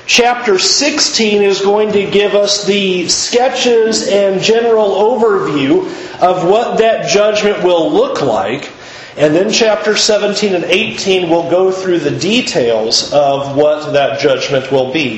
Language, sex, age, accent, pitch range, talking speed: English, male, 40-59, American, 155-215 Hz, 140 wpm